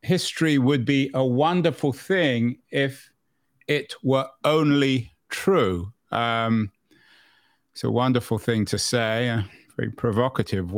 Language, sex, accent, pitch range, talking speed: English, male, British, 105-130 Hz, 115 wpm